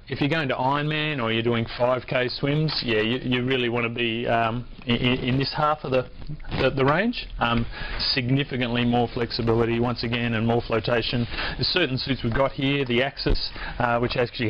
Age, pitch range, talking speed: 30-49, 115-140 Hz, 195 wpm